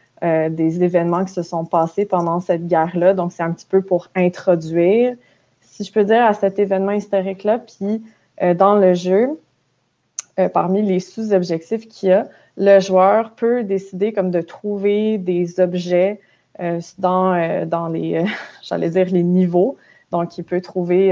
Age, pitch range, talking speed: 20-39, 170-195 Hz, 175 wpm